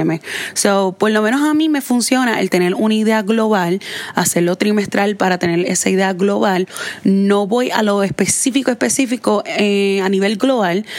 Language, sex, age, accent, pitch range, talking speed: Spanish, female, 20-39, Venezuelan, 185-235 Hz, 170 wpm